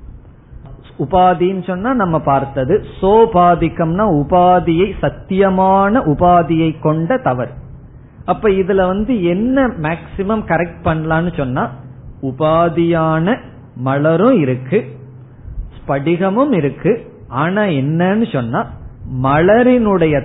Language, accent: Tamil, native